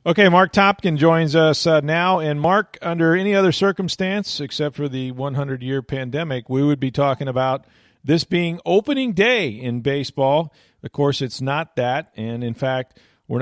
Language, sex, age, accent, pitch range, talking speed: English, male, 40-59, American, 120-155 Hz, 175 wpm